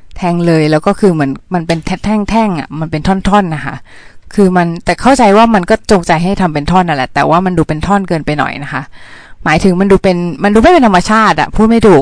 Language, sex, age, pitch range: Thai, female, 20-39, 155-210 Hz